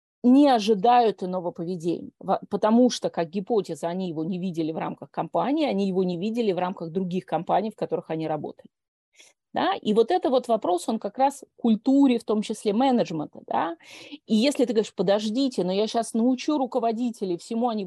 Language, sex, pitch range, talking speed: Russian, female, 185-245 Hz, 185 wpm